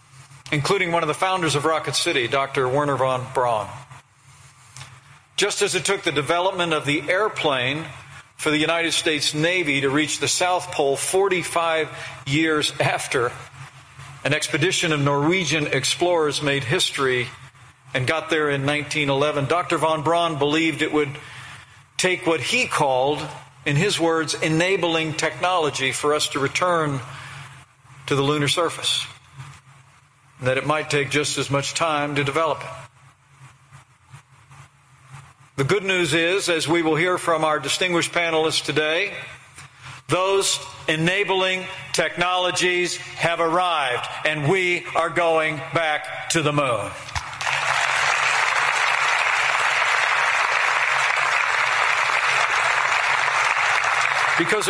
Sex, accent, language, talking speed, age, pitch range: male, American, English, 115 wpm, 50-69, 135-170 Hz